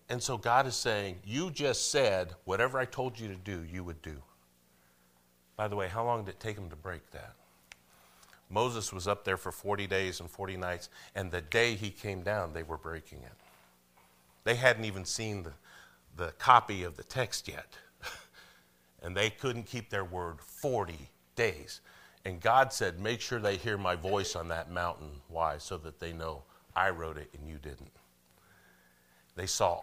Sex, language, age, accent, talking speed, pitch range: male, English, 50-69, American, 185 wpm, 70-105 Hz